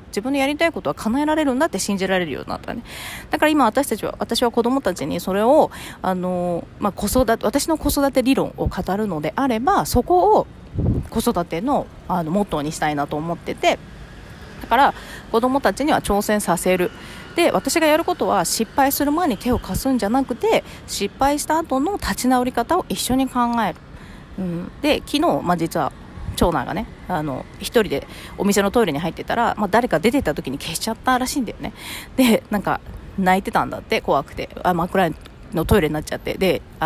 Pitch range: 180-275 Hz